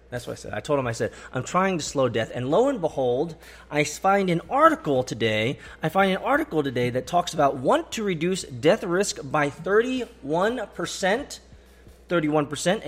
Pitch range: 135-195 Hz